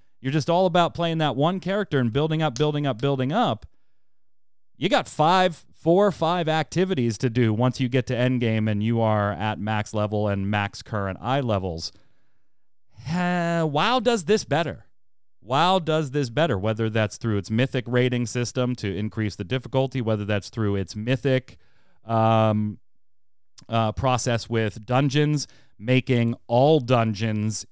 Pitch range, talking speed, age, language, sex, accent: 105-140 Hz, 155 wpm, 30-49, English, male, American